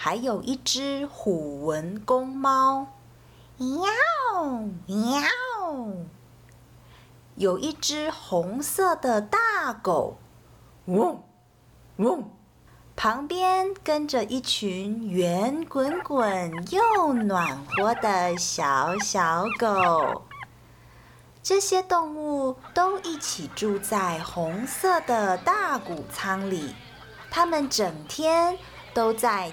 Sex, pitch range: female, 185-290 Hz